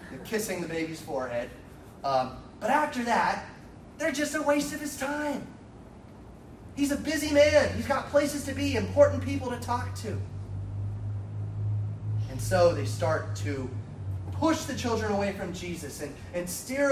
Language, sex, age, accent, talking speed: English, male, 30-49, American, 155 wpm